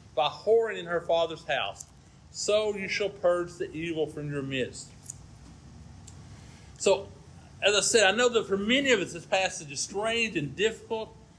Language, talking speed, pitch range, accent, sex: English, 170 wpm, 170-220 Hz, American, male